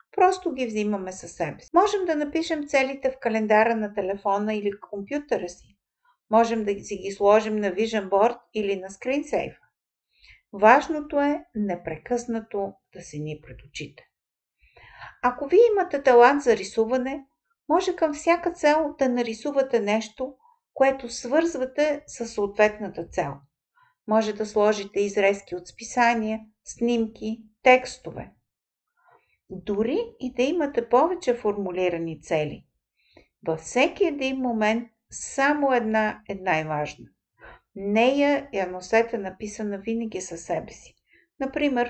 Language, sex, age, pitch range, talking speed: Bulgarian, female, 50-69, 200-275 Hz, 125 wpm